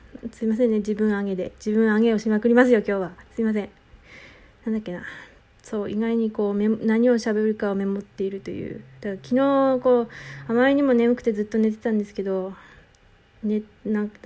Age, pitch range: 20-39, 205-245 Hz